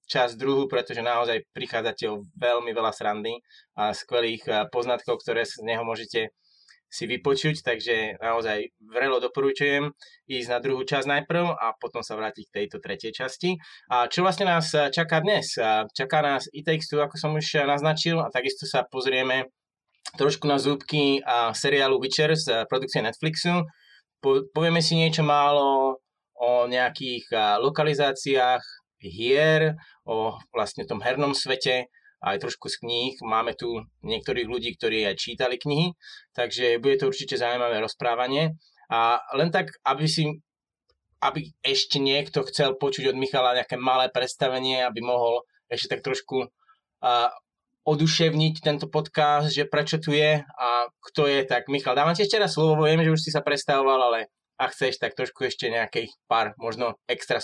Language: Slovak